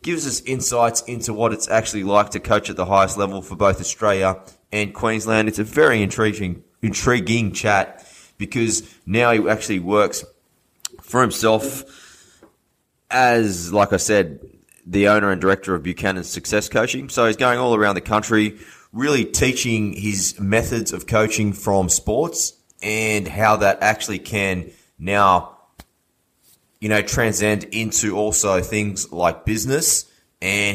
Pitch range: 95-115 Hz